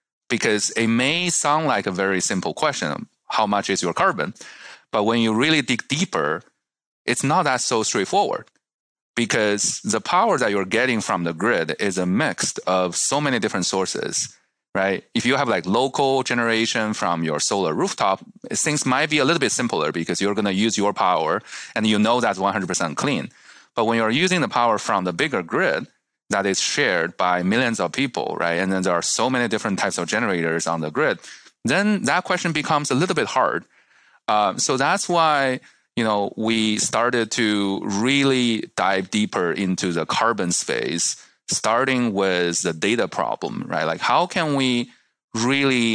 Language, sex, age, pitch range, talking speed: English, male, 30-49, 95-130 Hz, 180 wpm